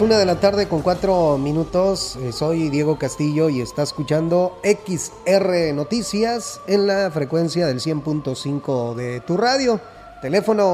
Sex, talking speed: male, 135 wpm